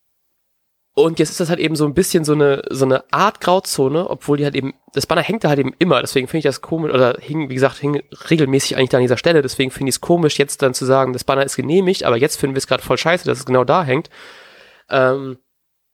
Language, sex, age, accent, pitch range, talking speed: German, male, 20-39, German, 130-170 Hz, 260 wpm